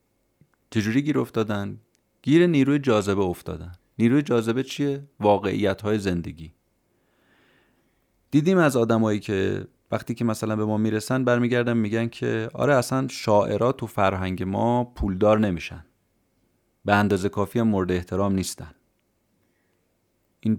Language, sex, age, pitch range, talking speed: Persian, male, 30-49, 95-125 Hz, 120 wpm